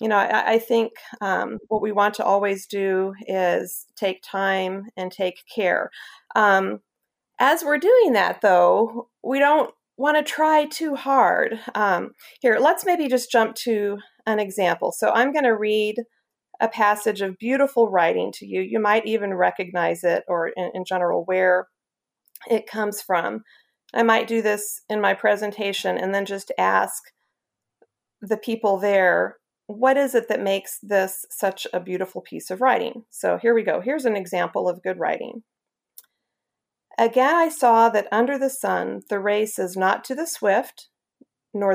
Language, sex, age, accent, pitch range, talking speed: English, female, 40-59, American, 195-240 Hz, 165 wpm